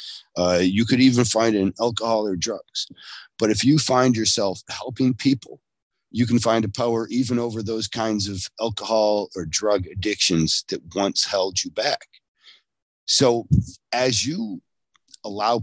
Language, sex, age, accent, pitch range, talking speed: English, male, 40-59, American, 95-125 Hz, 155 wpm